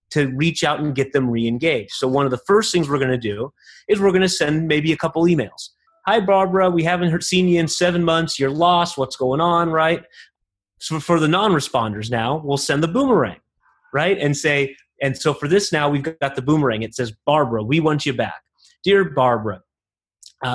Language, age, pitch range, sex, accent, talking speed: English, 30-49, 130-165 Hz, male, American, 215 wpm